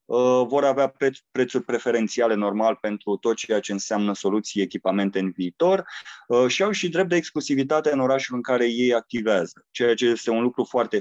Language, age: Romanian, 20-39